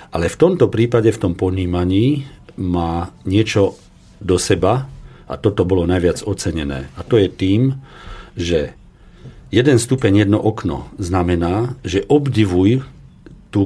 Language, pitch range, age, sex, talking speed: Slovak, 85-110 Hz, 50-69, male, 125 wpm